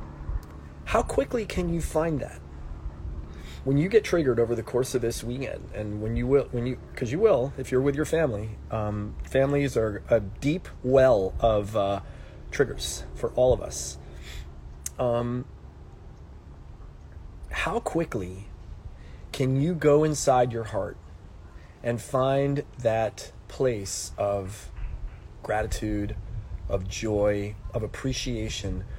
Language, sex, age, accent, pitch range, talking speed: English, male, 30-49, American, 85-130 Hz, 125 wpm